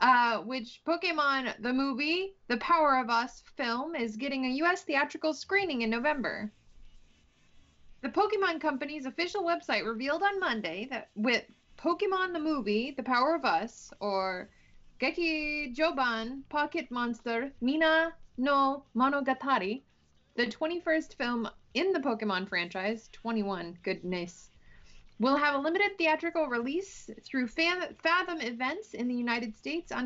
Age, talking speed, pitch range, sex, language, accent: 20-39, 130 wpm, 235-320 Hz, female, English, American